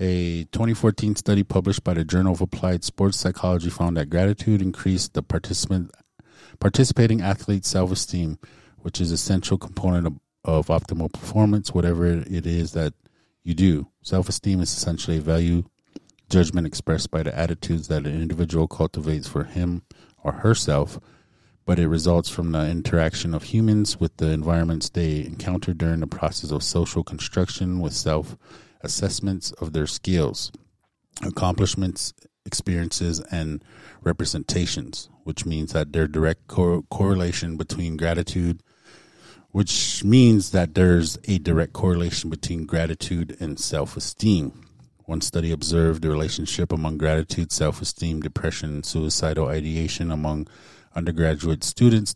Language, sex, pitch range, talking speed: English, male, 80-95 Hz, 135 wpm